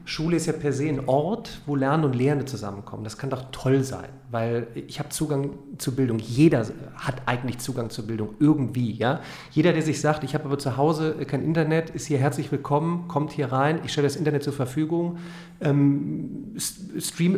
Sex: male